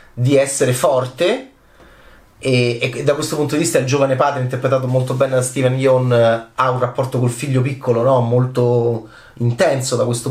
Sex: male